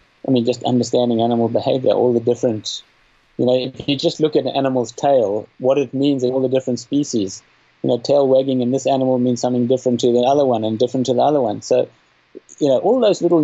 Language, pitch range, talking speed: English, 120-150 Hz, 235 wpm